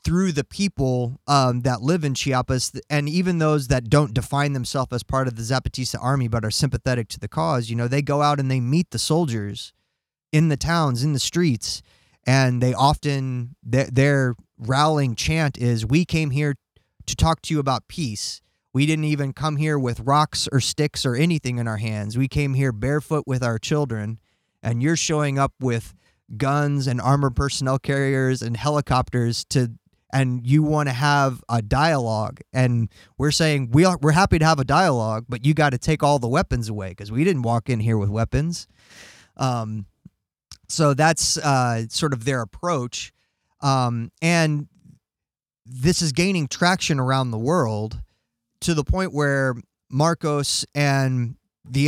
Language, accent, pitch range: English, American, 120-150 Hz